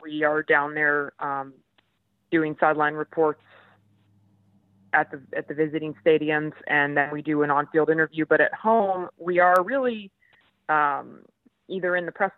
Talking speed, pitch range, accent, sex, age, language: 155 wpm, 150-180 Hz, American, female, 30-49, English